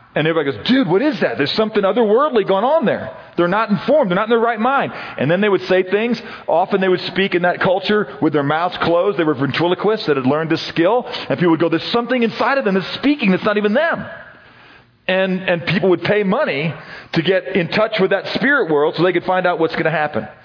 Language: English